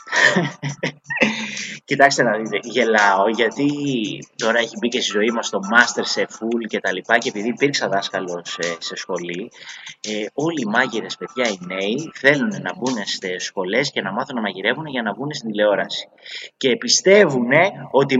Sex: male